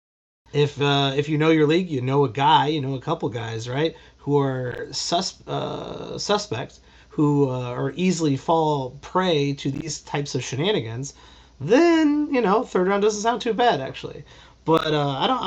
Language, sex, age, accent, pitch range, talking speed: English, male, 30-49, American, 130-170 Hz, 180 wpm